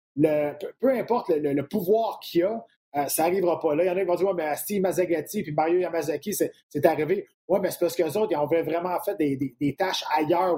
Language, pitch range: French, 150-210 Hz